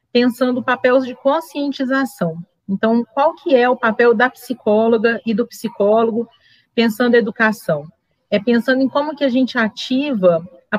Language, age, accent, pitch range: Portuguese, 40-59, Brazilian, 210-255 Hz